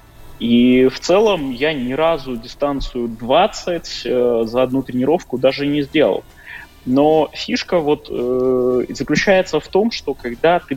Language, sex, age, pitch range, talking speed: Russian, male, 20-39, 115-160 Hz, 135 wpm